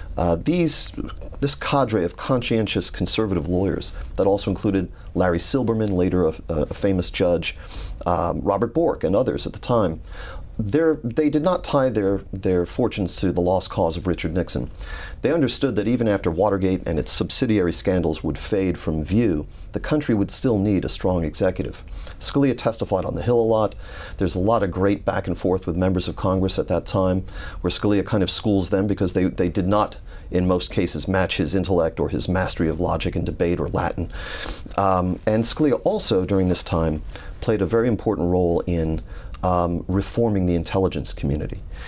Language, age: English, 40-59